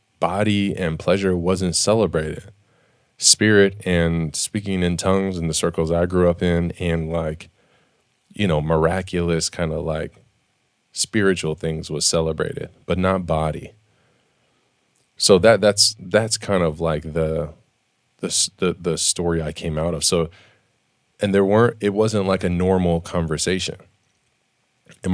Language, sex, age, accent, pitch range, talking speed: English, male, 20-39, American, 85-105 Hz, 140 wpm